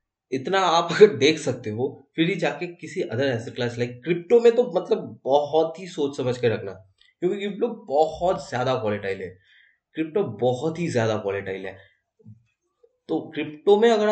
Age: 20-39